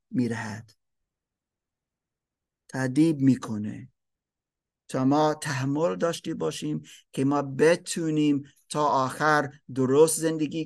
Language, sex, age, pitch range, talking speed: Persian, male, 50-69, 135-200 Hz, 85 wpm